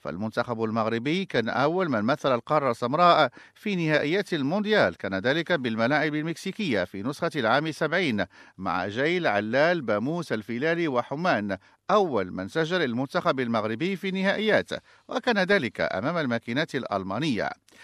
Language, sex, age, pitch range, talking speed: English, male, 50-69, 130-185 Hz, 125 wpm